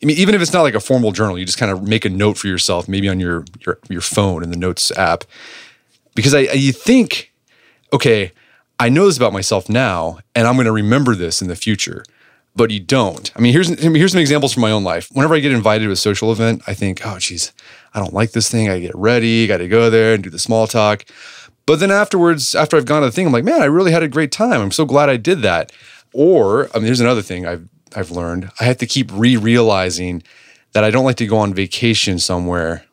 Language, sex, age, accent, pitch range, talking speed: English, male, 30-49, American, 95-125 Hz, 255 wpm